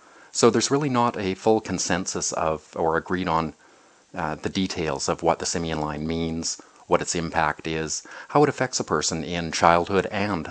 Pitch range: 80-105 Hz